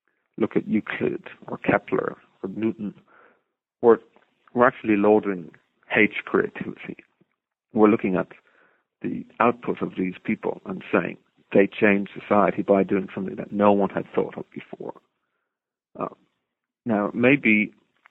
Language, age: English, 40-59